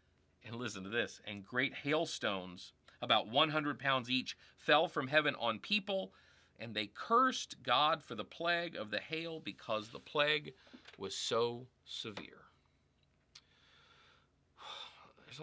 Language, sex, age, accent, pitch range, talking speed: English, male, 40-59, American, 95-145 Hz, 130 wpm